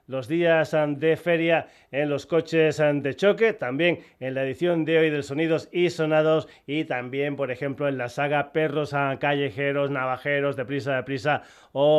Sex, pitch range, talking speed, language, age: male, 140-165 Hz, 175 wpm, Spanish, 30-49